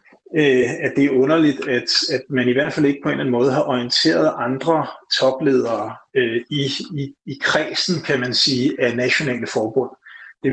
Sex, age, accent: male, 30-49, native